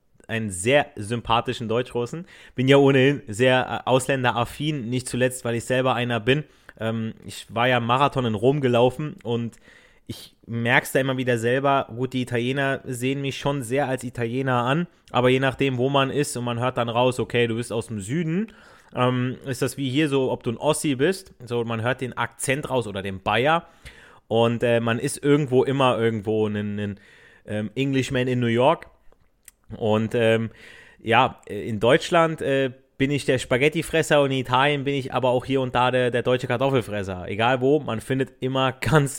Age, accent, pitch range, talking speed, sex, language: 30-49, German, 115-135 Hz, 180 wpm, male, German